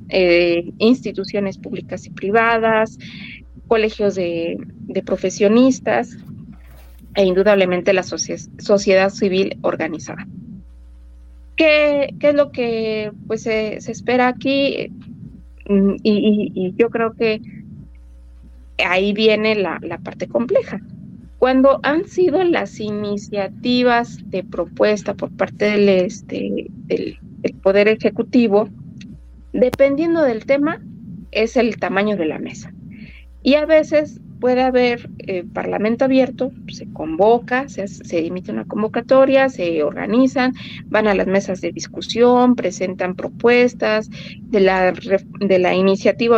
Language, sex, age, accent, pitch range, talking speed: Spanish, female, 30-49, Mexican, 185-230 Hz, 115 wpm